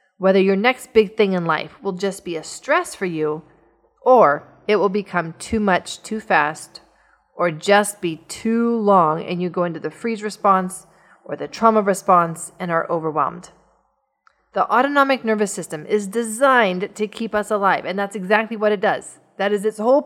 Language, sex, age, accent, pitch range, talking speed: English, female, 30-49, American, 180-235 Hz, 180 wpm